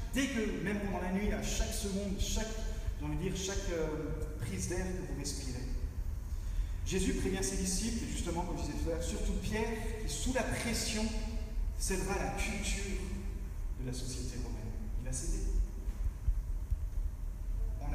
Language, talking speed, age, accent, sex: French, 155 wpm, 40-59, French, male